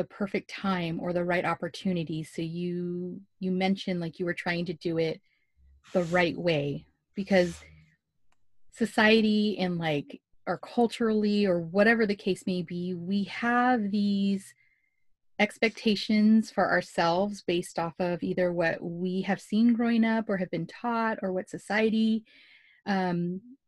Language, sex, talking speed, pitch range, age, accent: English, female, 145 wpm, 175-205 Hz, 30-49, American